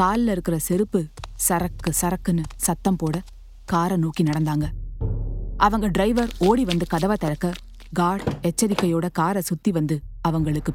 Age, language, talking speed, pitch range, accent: 20-39, Tamil, 125 wpm, 155-200 Hz, native